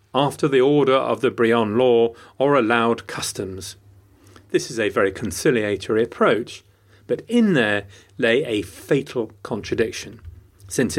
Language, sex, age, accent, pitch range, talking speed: English, male, 40-59, British, 100-135 Hz, 130 wpm